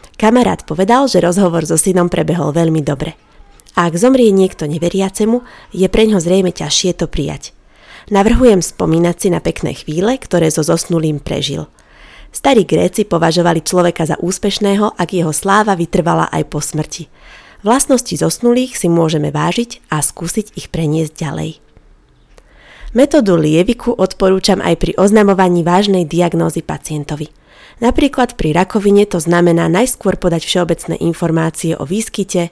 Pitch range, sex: 165-195 Hz, female